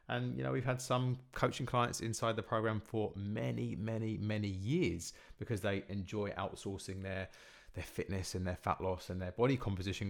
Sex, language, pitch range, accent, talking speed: male, English, 95-120 Hz, British, 185 wpm